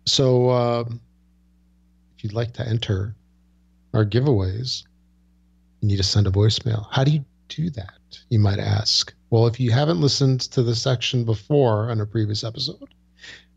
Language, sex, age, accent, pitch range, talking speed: English, male, 40-59, American, 95-120 Hz, 160 wpm